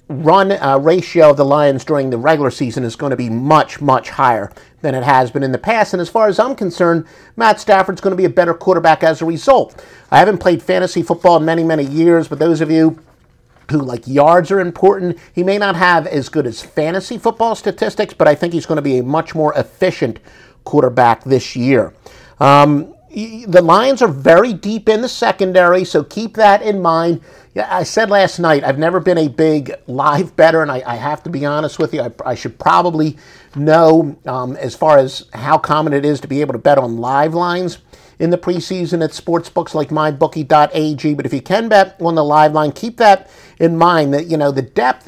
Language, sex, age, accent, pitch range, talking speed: English, male, 50-69, American, 140-180 Hz, 215 wpm